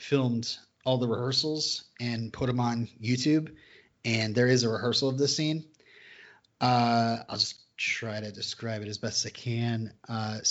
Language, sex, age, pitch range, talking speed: English, male, 30-49, 115-150 Hz, 165 wpm